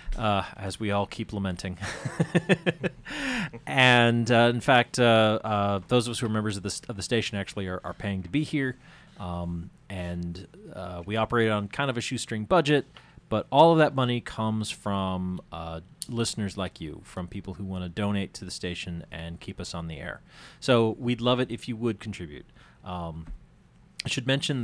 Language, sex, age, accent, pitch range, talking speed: English, male, 30-49, American, 95-125 Hz, 190 wpm